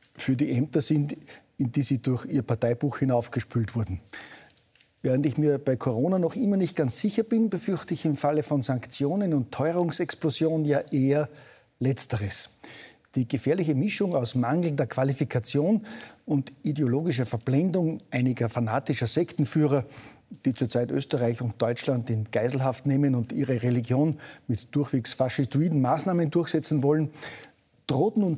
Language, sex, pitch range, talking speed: German, male, 125-155 Hz, 135 wpm